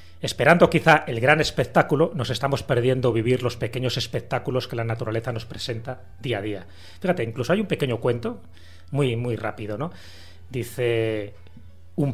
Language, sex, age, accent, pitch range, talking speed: Spanish, male, 30-49, Spanish, 110-165 Hz, 160 wpm